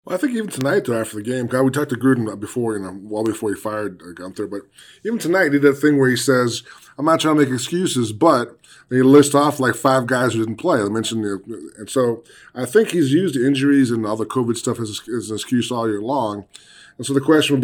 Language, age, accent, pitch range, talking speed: English, 20-39, American, 105-135 Hz, 260 wpm